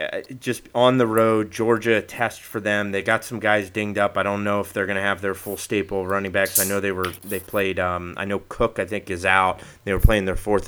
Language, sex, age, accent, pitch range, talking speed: English, male, 30-49, American, 95-110 Hz, 265 wpm